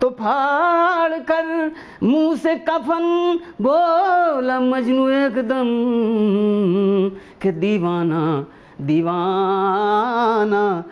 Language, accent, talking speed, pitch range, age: Hindi, native, 65 wpm, 195-305 Hz, 40-59